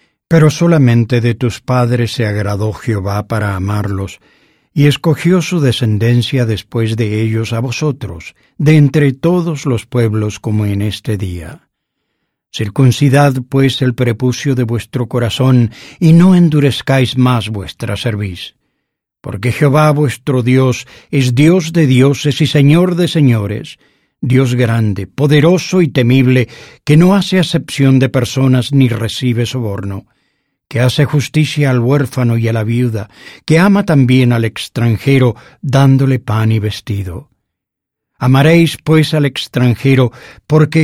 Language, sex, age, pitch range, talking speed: English, male, 60-79, 115-145 Hz, 130 wpm